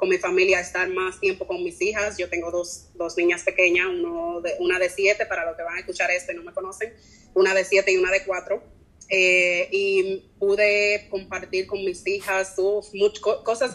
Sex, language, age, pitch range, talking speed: female, English, 20-39, 180-205 Hz, 210 wpm